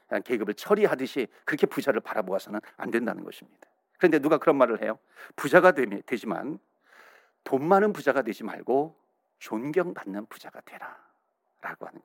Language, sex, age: Korean, male, 50-69